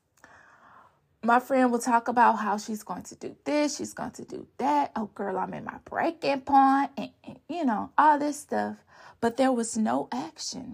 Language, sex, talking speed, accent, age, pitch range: English, female, 195 wpm, American, 20-39, 205-270 Hz